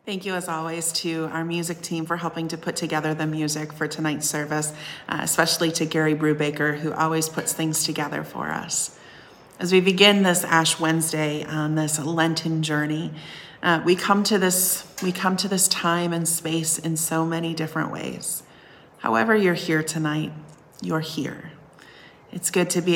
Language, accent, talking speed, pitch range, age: English, American, 175 wpm, 155-175 Hz, 30-49